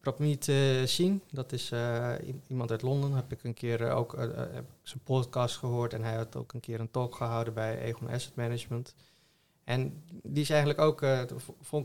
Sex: male